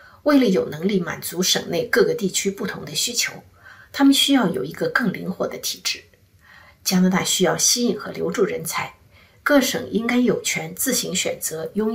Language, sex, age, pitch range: Chinese, female, 50-69, 180-250 Hz